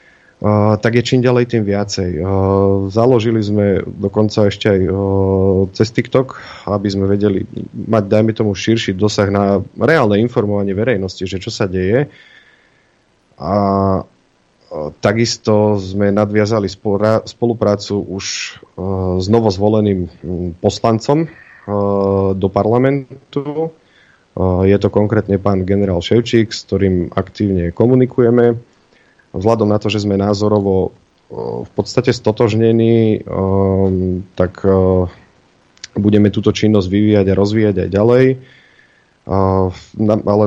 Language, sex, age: Slovak, male, 30-49